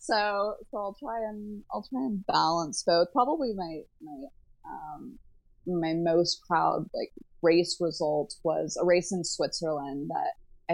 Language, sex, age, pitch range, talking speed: English, female, 20-39, 160-205 Hz, 150 wpm